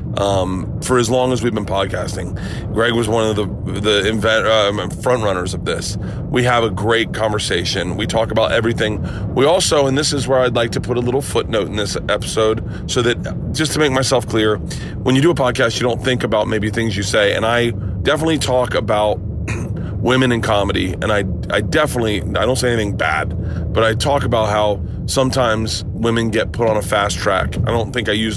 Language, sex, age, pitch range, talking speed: English, male, 30-49, 100-120 Hz, 210 wpm